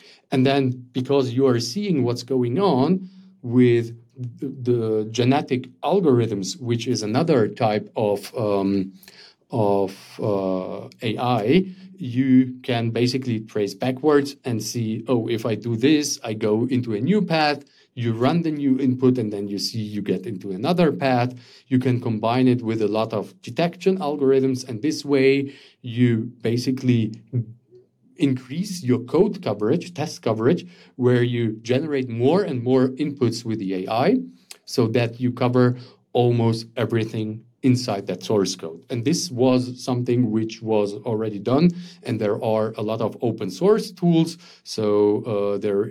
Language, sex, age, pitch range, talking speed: English, male, 40-59, 110-135 Hz, 150 wpm